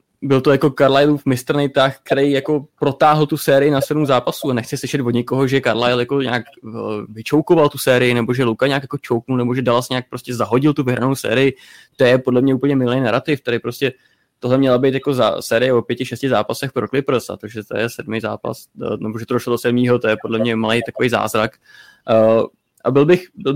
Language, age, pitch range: Czech, 20-39, 120-140 Hz